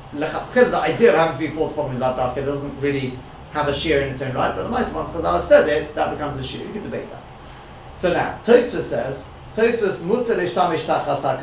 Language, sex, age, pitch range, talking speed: English, male, 40-59, 145-205 Hz, 225 wpm